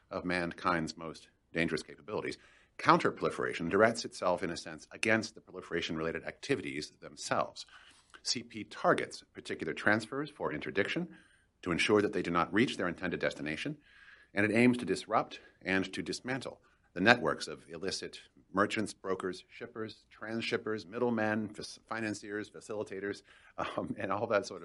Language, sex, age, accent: English, male, 50-69, American